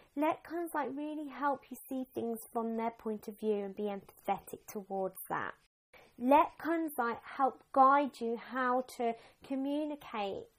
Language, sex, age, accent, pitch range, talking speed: English, female, 30-49, British, 205-290 Hz, 140 wpm